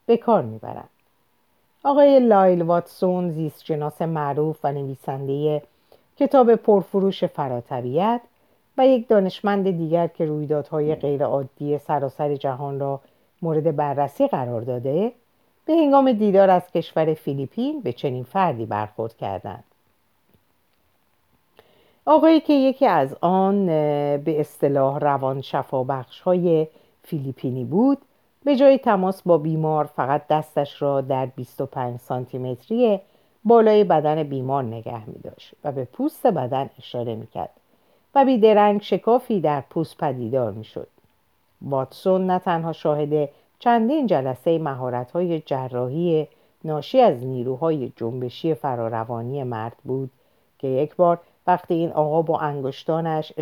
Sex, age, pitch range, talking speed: female, 50-69, 135-190 Hz, 120 wpm